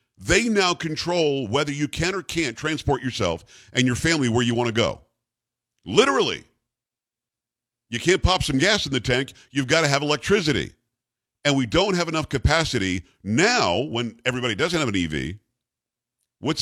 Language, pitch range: English, 115-145 Hz